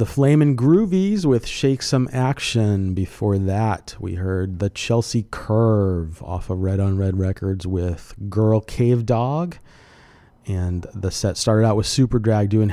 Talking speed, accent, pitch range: 155 wpm, American, 95-115 Hz